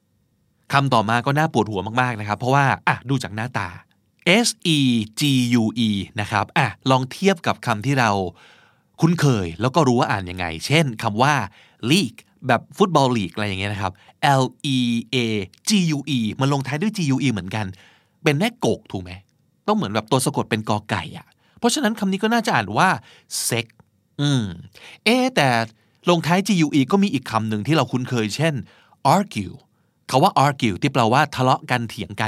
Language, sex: Thai, male